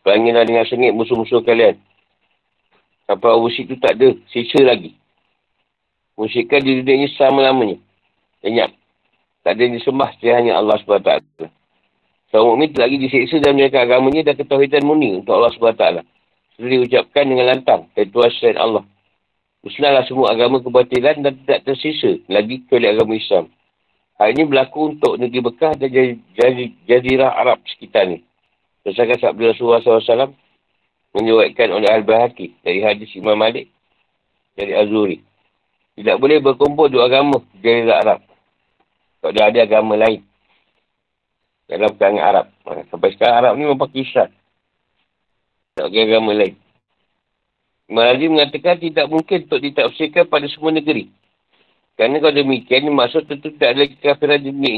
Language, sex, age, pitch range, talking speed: Malay, male, 50-69, 115-150 Hz, 135 wpm